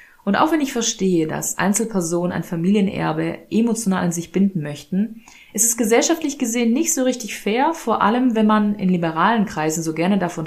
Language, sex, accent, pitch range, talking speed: German, female, German, 170-220 Hz, 185 wpm